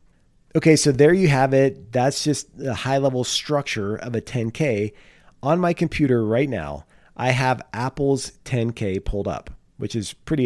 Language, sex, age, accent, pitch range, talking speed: English, male, 40-59, American, 110-135 Hz, 165 wpm